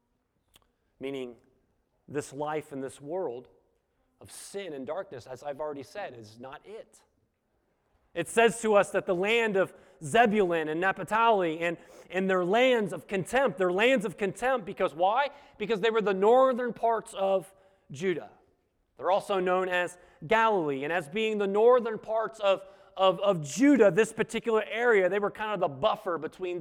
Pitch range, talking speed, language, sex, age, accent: 175-225 Hz, 165 wpm, English, male, 30-49, American